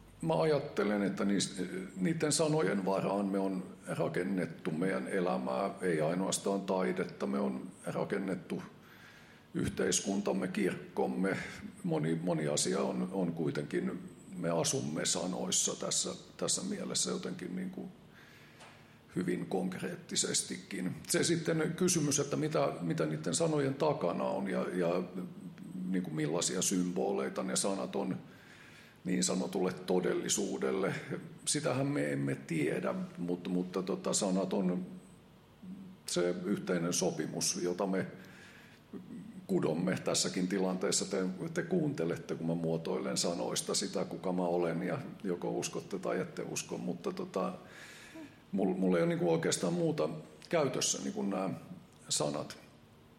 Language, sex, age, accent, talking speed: Finnish, male, 50-69, native, 115 wpm